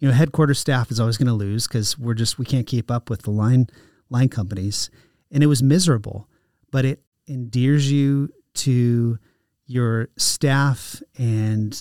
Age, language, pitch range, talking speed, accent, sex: 30-49, English, 115-135 Hz, 165 wpm, American, male